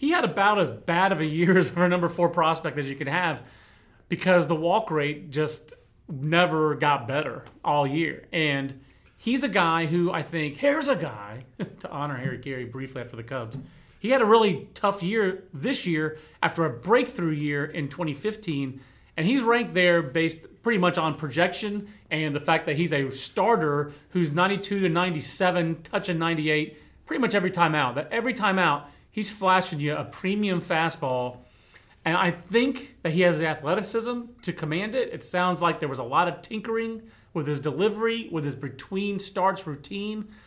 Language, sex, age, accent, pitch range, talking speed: English, male, 30-49, American, 150-200 Hz, 180 wpm